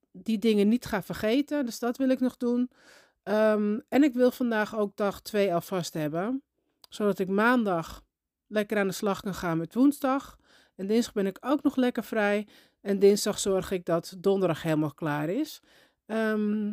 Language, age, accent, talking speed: Dutch, 40-59, Dutch, 180 wpm